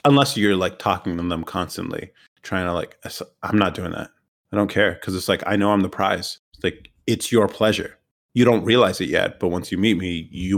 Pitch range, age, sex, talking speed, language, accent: 90-105 Hz, 30-49, male, 235 wpm, English, American